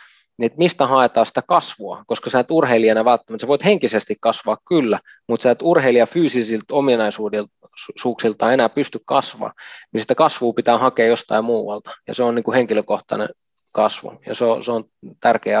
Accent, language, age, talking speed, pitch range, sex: native, Finnish, 20-39, 175 wpm, 110-125 Hz, male